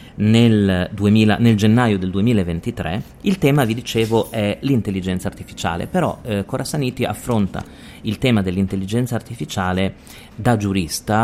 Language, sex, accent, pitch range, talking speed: Italian, male, native, 95-125 Hz, 115 wpm